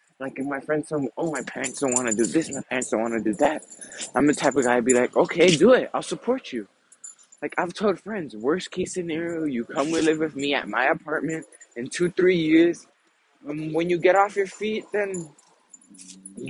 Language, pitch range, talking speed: English, 135-175 Hz, 230 wpm